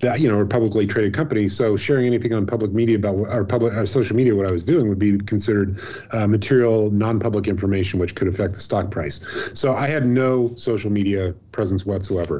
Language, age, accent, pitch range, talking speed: English, 30-49, American, 105-125 Hz, 215 wpm